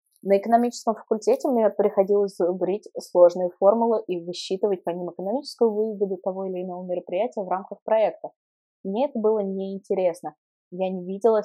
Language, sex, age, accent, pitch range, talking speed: Russian, female, 20-39, native, 185-225 Hz, 145 wpm